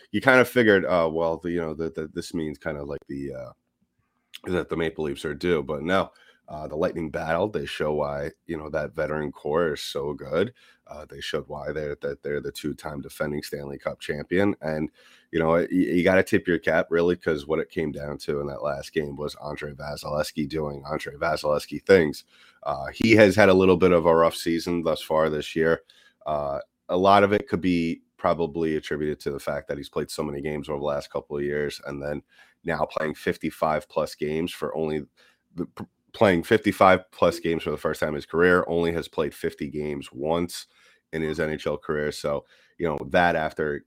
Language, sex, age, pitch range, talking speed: English, male, 30-49, 75-90 Hz, 210 wpm